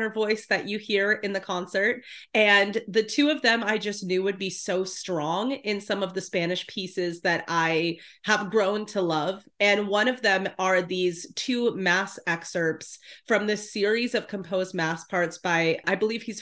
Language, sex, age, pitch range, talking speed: English, female, 30-49, 170-210 Hz, 185 wpm